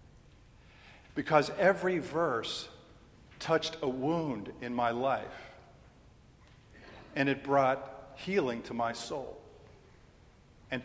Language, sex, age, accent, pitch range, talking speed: English, male, 50-69, American, 125-145 Hz, 95 wpm